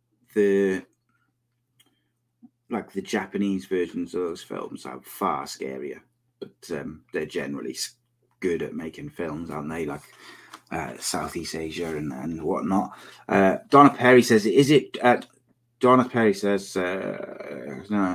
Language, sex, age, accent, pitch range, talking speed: English, male, 30-49, British, 95-125 Hz, 130 wpm